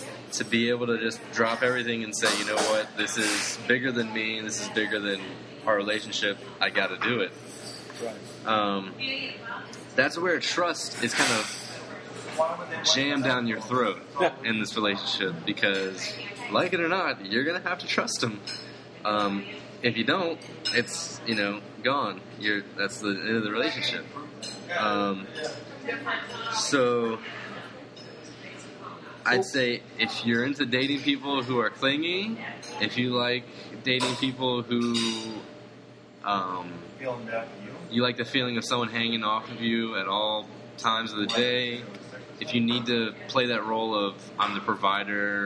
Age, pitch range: 20-39, 100-125 Hz